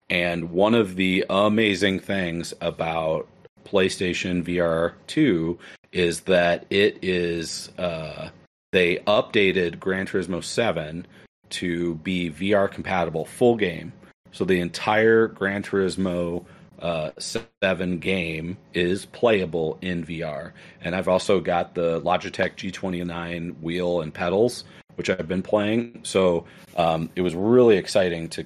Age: 40-59